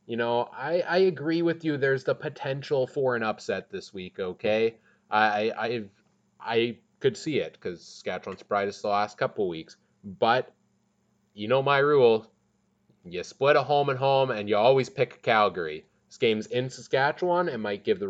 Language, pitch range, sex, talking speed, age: English, 95-135 Hz, male, 170 wpm, 20-39